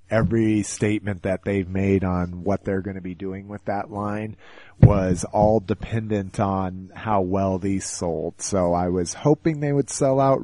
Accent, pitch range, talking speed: American, 95-115 Hz, 180 wpm